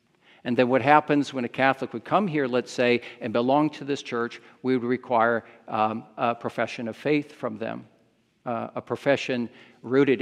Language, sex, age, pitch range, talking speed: English, male, 50-69, 120-165 Hz, 180 wpm